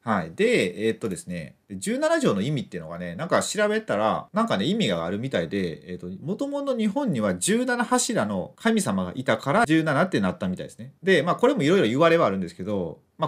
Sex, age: male, 30-49